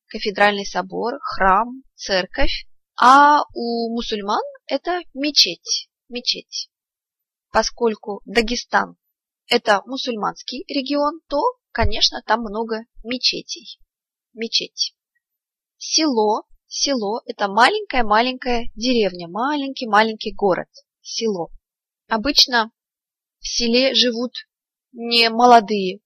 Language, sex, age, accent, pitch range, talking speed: Russian, female, 20-39, native, 210-265 Hz, 80 wpm